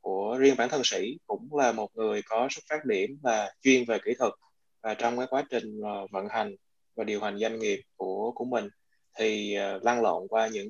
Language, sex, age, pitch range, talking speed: Vietnamese, male, 20-39, 110-145 Hz, 215 wpm